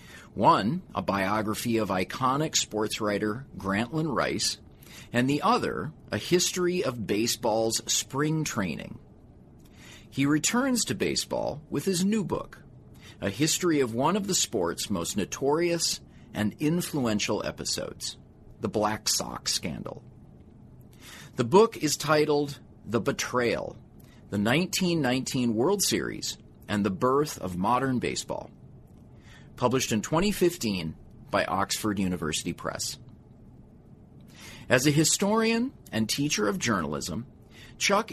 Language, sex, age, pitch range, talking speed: English, male, 40-59, 110-155 Hz, 115 wpm